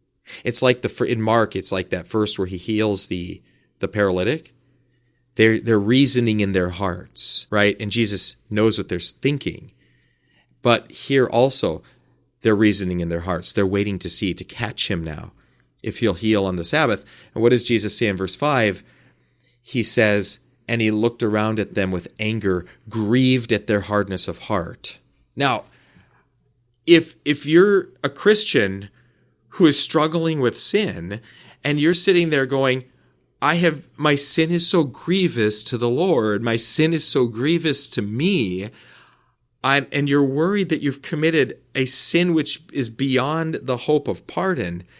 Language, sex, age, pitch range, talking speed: English, male, 30-49, 105-155 Hz, 165 wpm